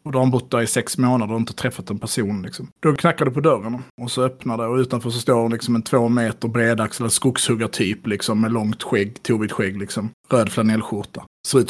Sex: male